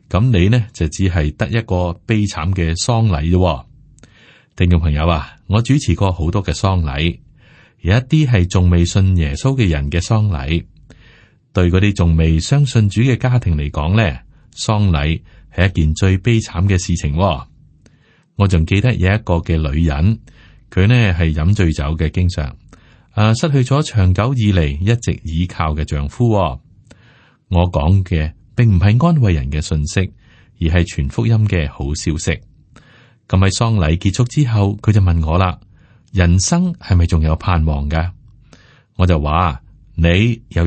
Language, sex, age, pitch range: Chinese, male, 30-49, 80-115 Hz